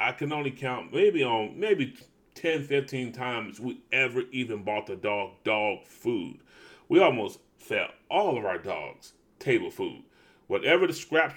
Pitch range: 105-160 Hz